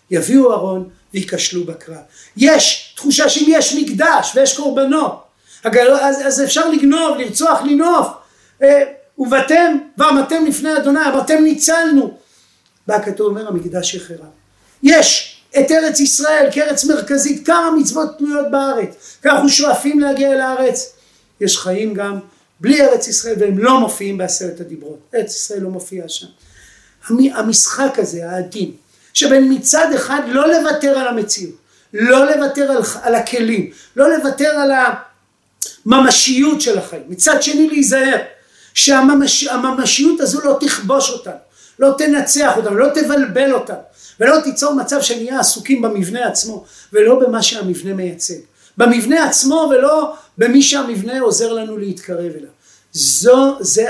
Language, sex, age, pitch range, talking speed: Hebrew, male, 40-59, 205-285 Hz, 130 wpm